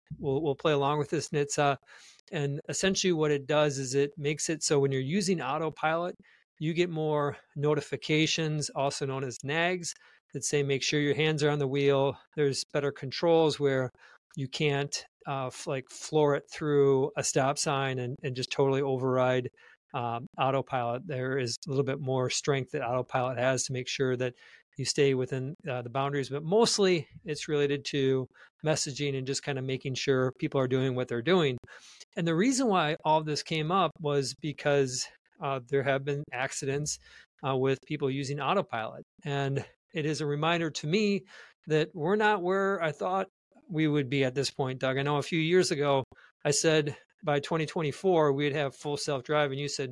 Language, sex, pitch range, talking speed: English, male, 135-155 Hz, 190 wpm